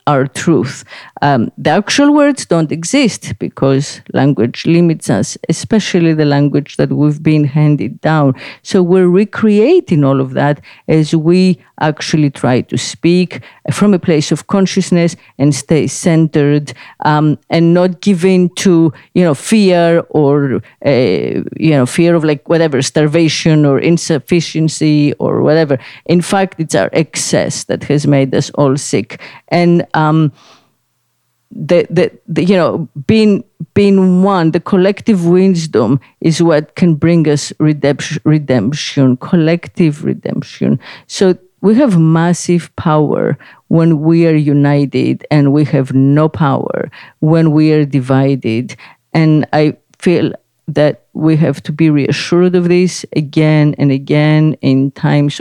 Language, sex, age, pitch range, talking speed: English, female, 50-69, 145-175 Hz, 140 wpm